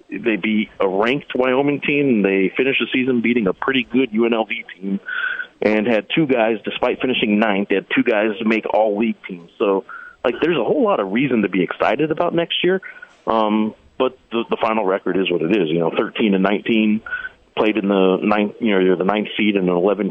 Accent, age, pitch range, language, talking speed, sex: American, 30-49, 100-160 Hz, English, 225 wpm, male